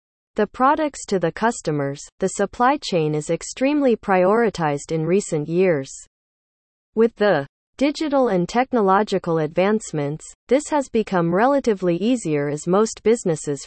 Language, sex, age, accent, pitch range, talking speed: English, female, 40-59, American, 155-225 Hz, 125 wpm